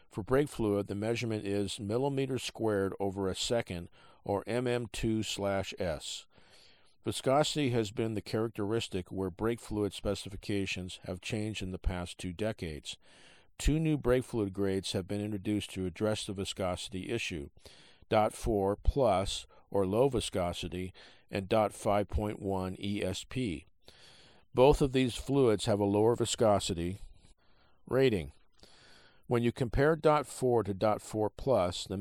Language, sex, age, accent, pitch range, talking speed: English, male, 50-69, American, 95-115 Hz, 125 wpm